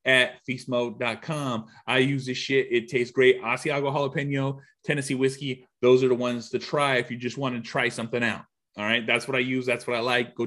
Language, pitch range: English, 150-195 Hz